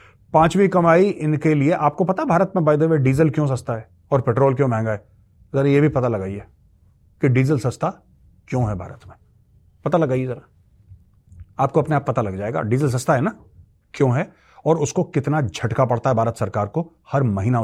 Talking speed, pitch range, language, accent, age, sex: 190 wpm, 100-145 Hz, Hindi, native, 30-49, male